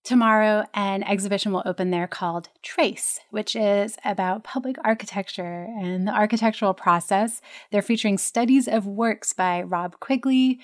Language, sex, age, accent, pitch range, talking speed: English, female, 30-49, American, 185-225 Hz, 140 wpm